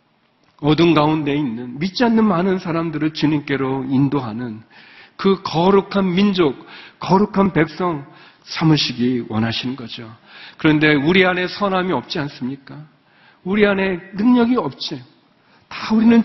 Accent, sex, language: native, male, Korean